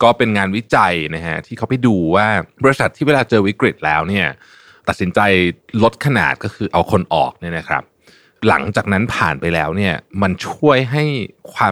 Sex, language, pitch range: male, Thai, 85-115 Hz